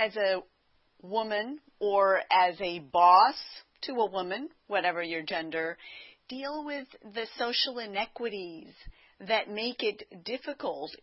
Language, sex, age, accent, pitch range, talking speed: English, female, 40-59, American, 185-225 Hz, 120 wpm